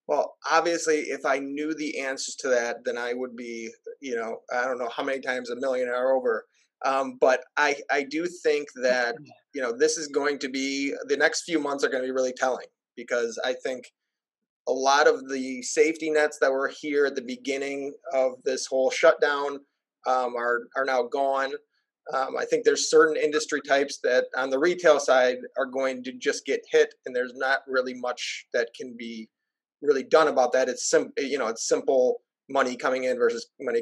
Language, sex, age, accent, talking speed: English, male, 20-39, American, 200 wpm